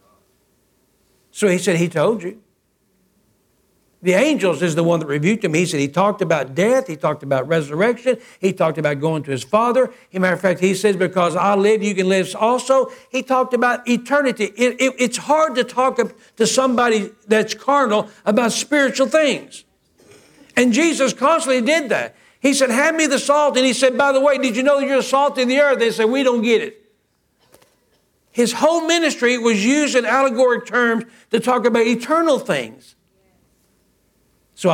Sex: male